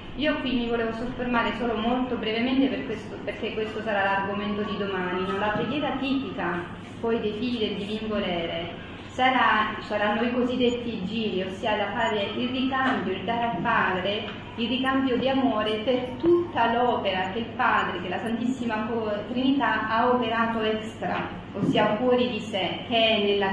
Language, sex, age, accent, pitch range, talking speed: Italian, female, 30-49, native, 200-250 Hz, 150 wpm